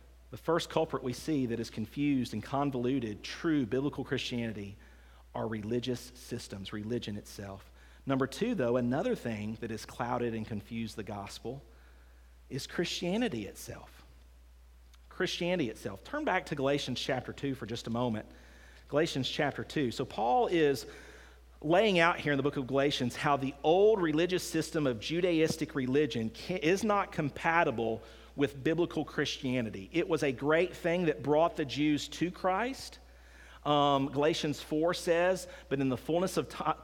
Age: 40-59